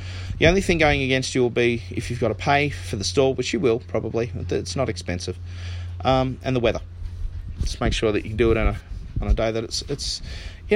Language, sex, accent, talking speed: English, male, Australian, 245 wpm